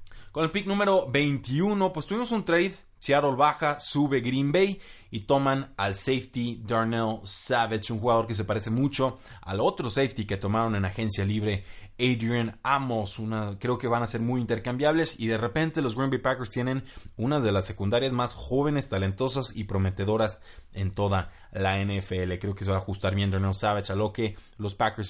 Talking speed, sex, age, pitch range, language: 185 wpm, male, 20-39, 105-135 Hz, Spanish